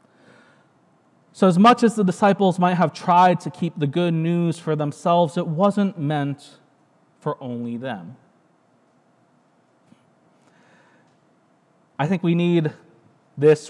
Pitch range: 145-180 Hz